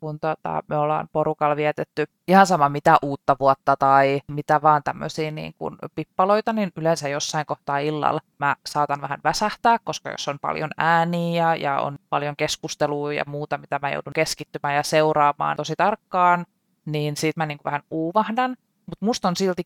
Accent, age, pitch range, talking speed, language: native, 20-39, 155-200 Hz, 170 wpm, Finnish